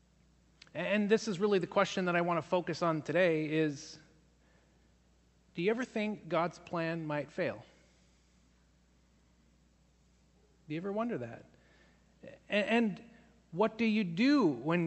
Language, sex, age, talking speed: English, male, 30-49, 135 wpm